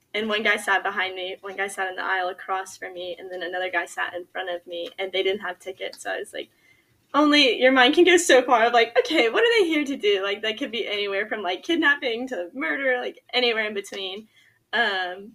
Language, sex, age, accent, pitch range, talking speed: English, female, 10-29, American, 190-240 Hz, 245 wpm